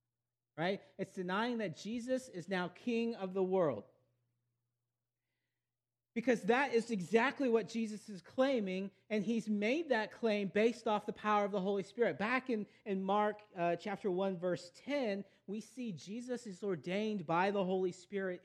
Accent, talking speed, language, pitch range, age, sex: American, 165 wpm, English, 140-225 Hz, 40-59, male